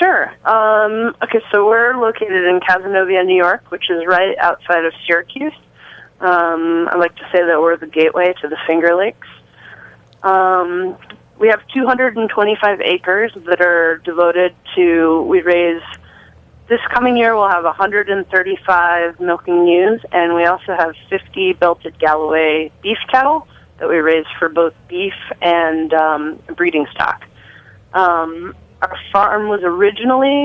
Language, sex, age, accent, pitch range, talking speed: English, female, 20-39, American, 160-190 Hz, 140 wpm